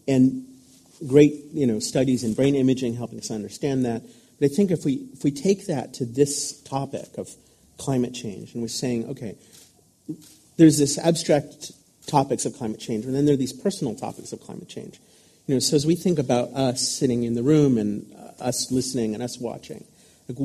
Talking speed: 195 wpm